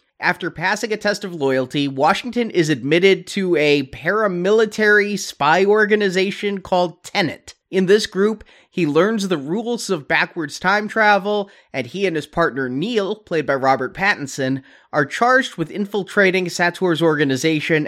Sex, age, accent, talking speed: male, 30-49, American, 145 wpm